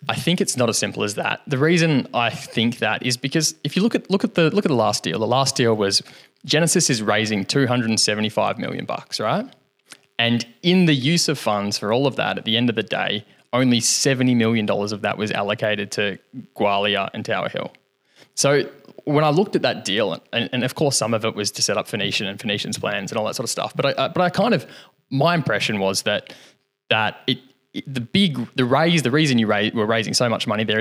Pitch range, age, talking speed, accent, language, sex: 110-140 Hz, 20-39, 240 wpm, Australian, English, male